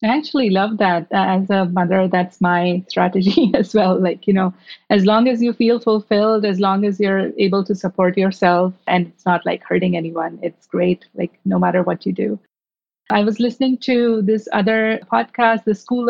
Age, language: 30-49, English